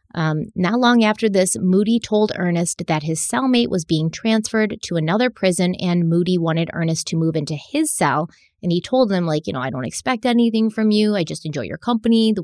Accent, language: American, English